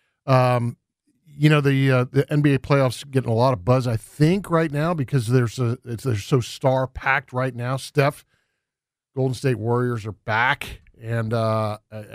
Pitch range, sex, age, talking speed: 125-165 Hz, male, 40-59, 180 wpm